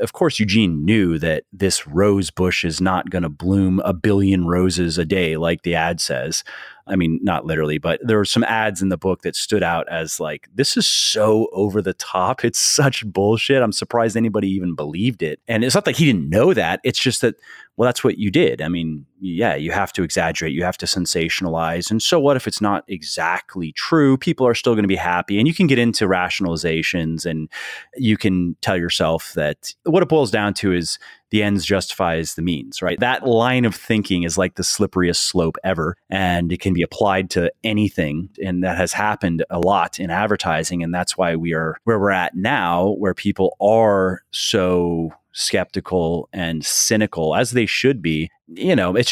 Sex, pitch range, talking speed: male, 85-110 Hz, 205 wpm